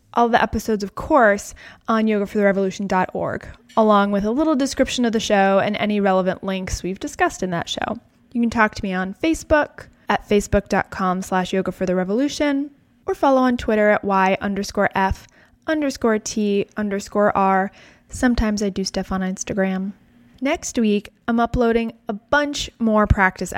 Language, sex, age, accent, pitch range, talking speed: English, female, 20-39, American, 195-240 Hz, 155 wpm